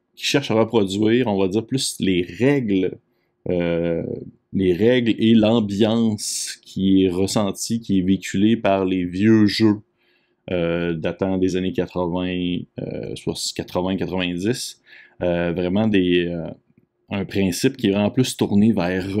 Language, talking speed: French, 145 wpm